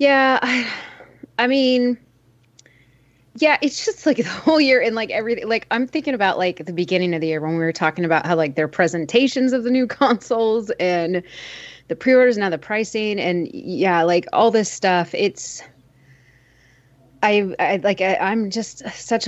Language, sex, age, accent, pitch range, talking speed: English, female, 20-39, American, 160-210 Hz, 175 wpm